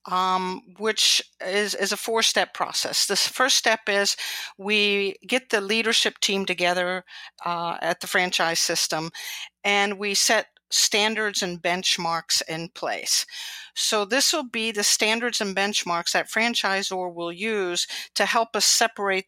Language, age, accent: English, 50-69, American